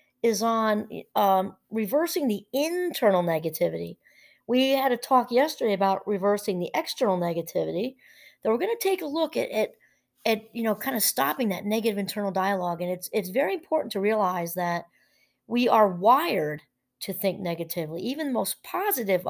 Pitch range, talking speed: 185-220 Hz, 170 wpm